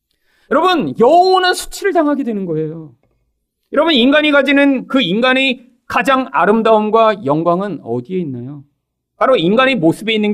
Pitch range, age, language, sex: 175-270 Hz, 40-59, Korean, male